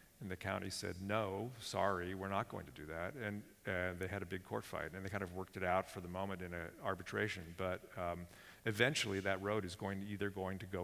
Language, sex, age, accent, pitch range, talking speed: English, male, 50-69, American, 90-105 Hz, 250 wpm